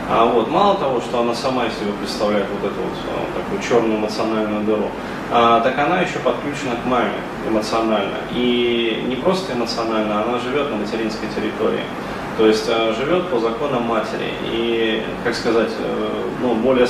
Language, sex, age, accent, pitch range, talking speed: Russian, male, 20-39, native, 110-140 Hz, 155 wpm